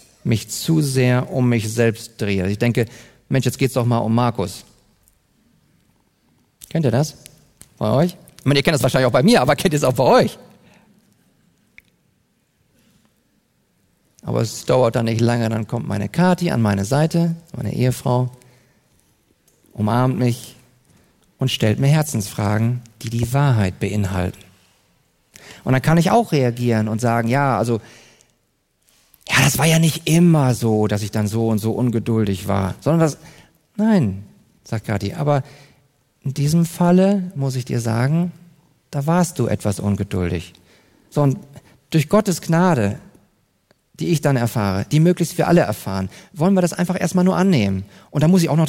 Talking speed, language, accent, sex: 165 wpm, German, German, male